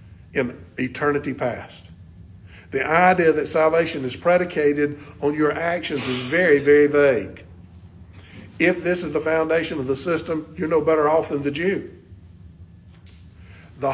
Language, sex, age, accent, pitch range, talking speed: English, male, 50-69, American, 130-175 Hz, 140 wpm